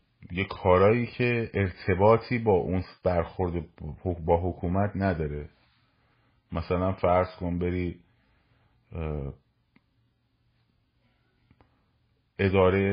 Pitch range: 85-115 Hz